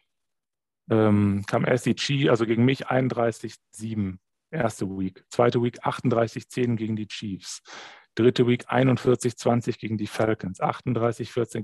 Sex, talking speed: male, 115 wpm